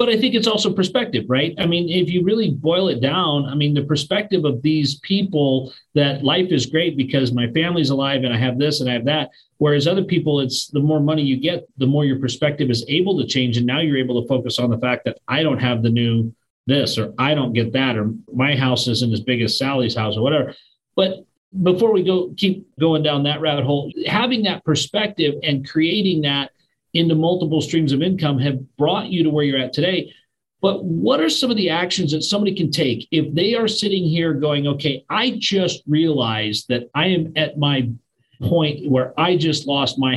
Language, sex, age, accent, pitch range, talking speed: English, male, 40-59, American, 130-170 Hz, 220 wpm